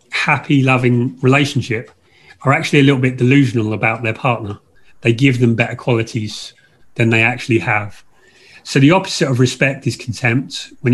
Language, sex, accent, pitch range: English, male, British, 115-140 Hz